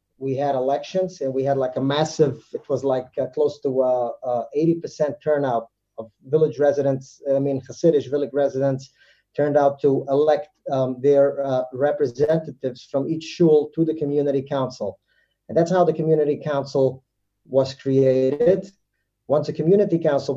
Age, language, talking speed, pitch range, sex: 30-49, English, 160 wpm, 130-145 Hz, male